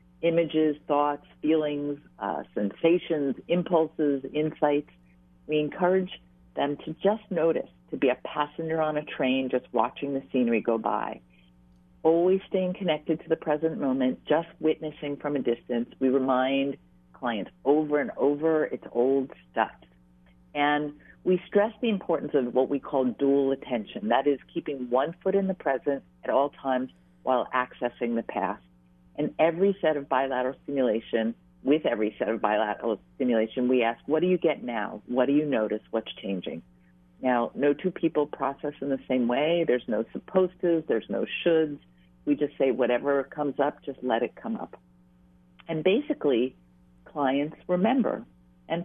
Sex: female